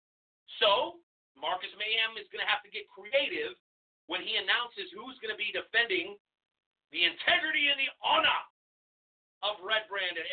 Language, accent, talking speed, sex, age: English, American, 155 wpm, male, 40-59